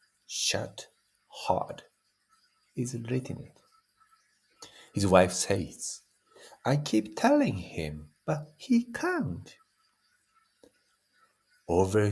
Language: Japanese